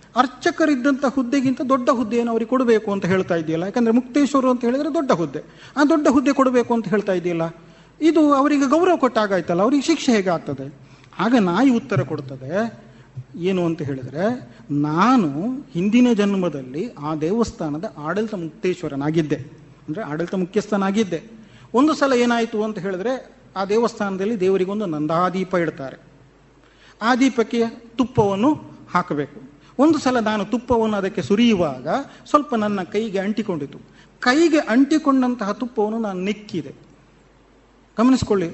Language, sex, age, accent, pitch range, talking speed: Kannada, male, 40-59, native, 175-255 Hz, 120 wpm